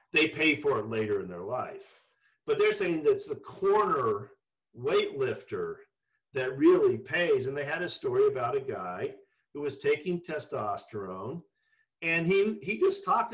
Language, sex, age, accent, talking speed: English, male, 50-69, American, 160 wpm